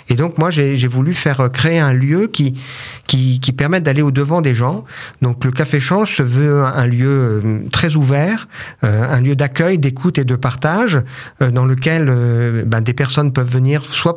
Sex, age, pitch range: male, 50-69, 120-145 Hz